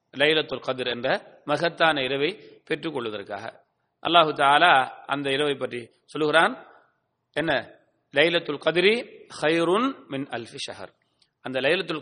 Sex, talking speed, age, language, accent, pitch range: male, 120 wpm, 30-49, English, Indian, 140-190 Hz